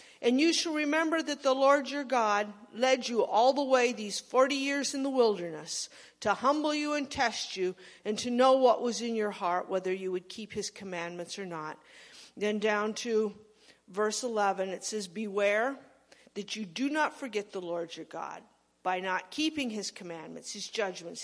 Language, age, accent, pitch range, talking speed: English, 50-69, American, 190-245 Hz, 185 wpm